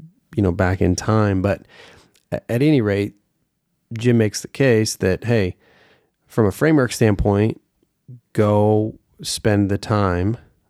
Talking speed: 130 wpm